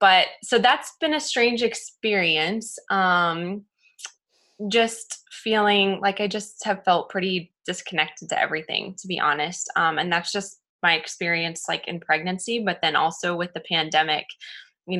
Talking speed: 150 wpm